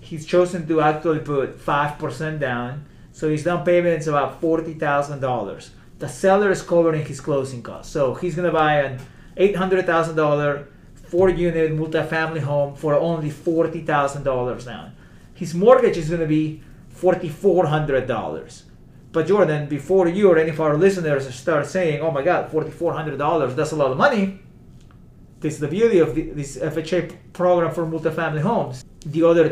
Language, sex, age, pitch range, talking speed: English, male, 30-49, 145-180 Hz, 150 wpm